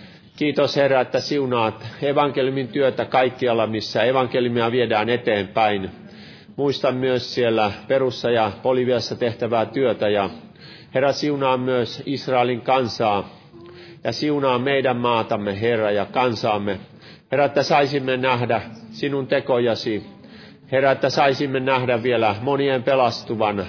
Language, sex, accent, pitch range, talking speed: Finnish, male, native, 95-130 Hz, 115 wpm